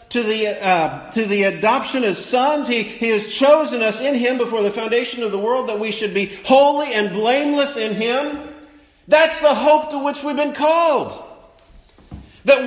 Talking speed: 175 wpm